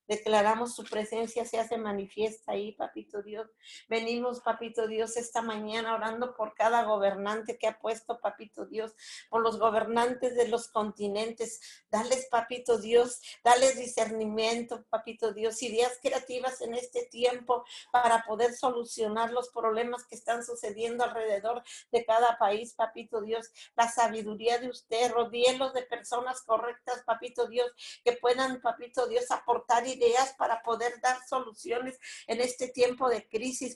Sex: female